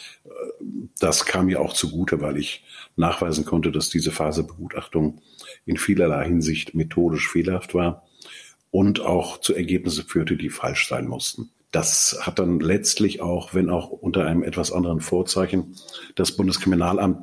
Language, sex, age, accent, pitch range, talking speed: German, male, 50-69, German, 80-90 Hz, 145 wpm